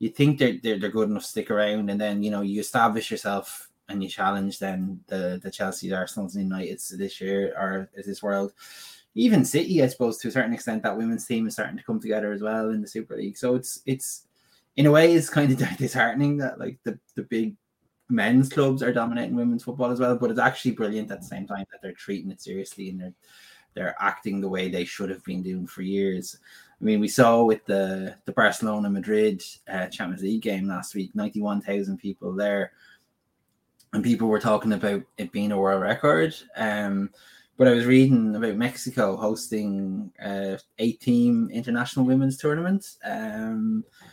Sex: male